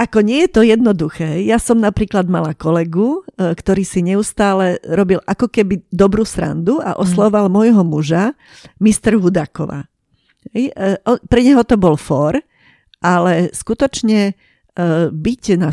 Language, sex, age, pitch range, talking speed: Slovak, female, 50-69, 165-200 Hz, 125 wpm